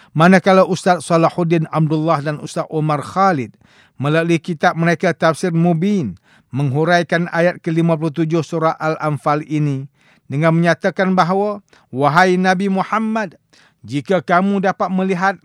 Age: 50-69